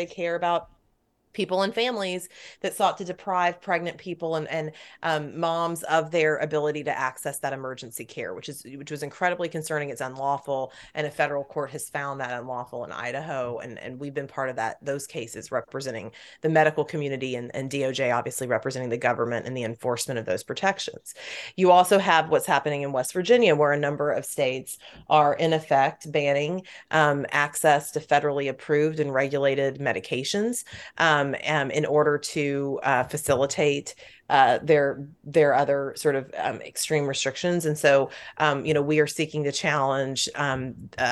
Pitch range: 135-160 Hz